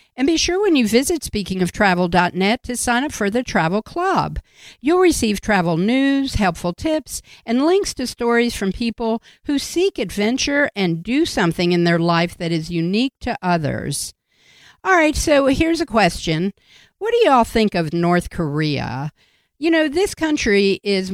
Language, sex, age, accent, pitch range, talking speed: English, female, 50-69, American, 180-285 Hz, 165 wpm